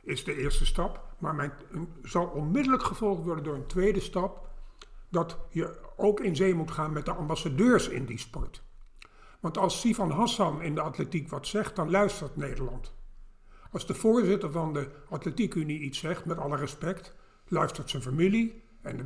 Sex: male